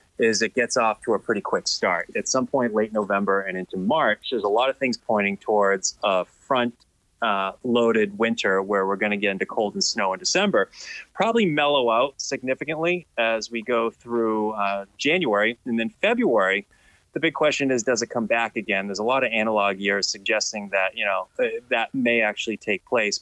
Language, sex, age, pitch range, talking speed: English, male, 30-49, 105-140 Hz, 195 wpm